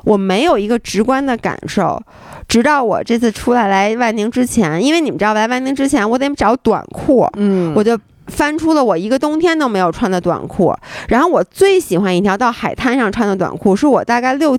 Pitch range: 200-290 Hz